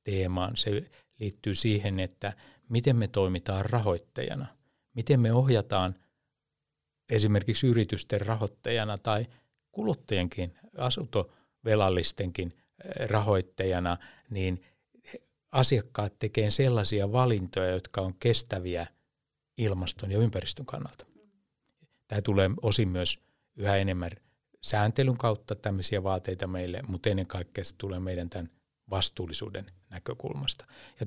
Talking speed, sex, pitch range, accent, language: 100 wpm, male, 95-115 Hz, native, Finnish